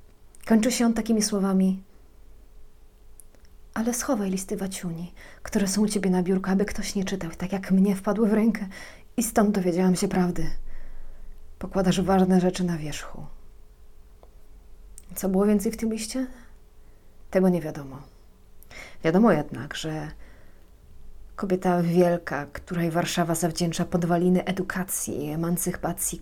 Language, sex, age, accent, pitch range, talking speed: Polish, female, 30-49, native, 160-190 Hz, 130 wpm